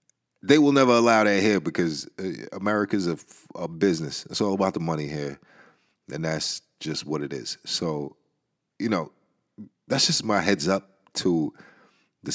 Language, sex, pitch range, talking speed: English, male, 85-115 Hz, 160 wpm